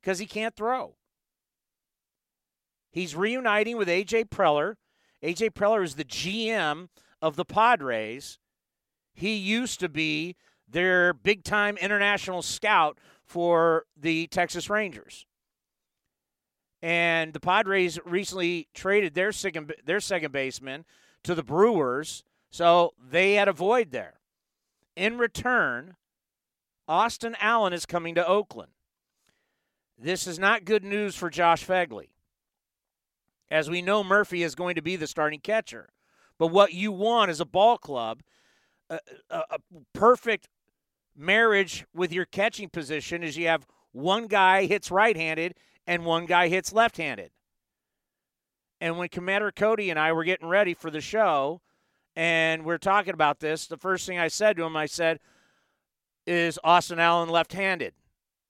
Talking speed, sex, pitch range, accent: 135 wpm, male, 165-205 Hz, American